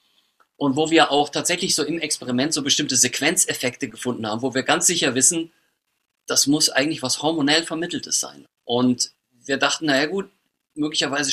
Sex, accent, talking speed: male, German, 165 wpm